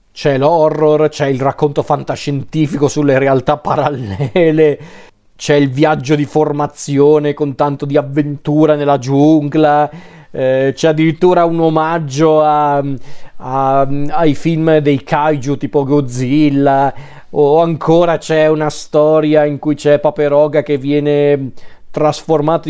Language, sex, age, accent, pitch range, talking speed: Italian, male, 40-59, native, 140-155 Hz, 115 wpm